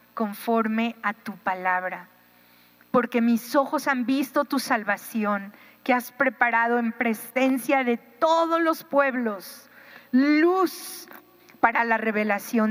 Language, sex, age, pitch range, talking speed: Spanish, female, 40-59, 200-255 Hz, 115 wpm